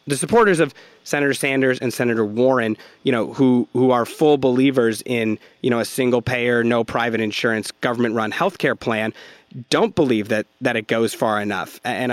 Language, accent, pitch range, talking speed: English, American, 115-140 Hz, 190 wpm